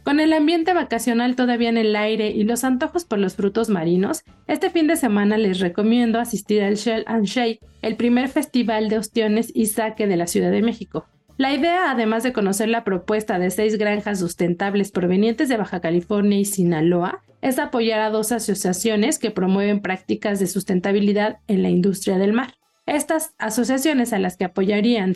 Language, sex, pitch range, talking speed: Spanish, female, 195-240 Hz, 180 wpm